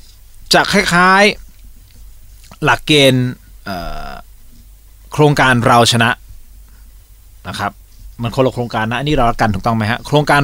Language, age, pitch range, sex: Thai, 20-39, 115-150 Hz, male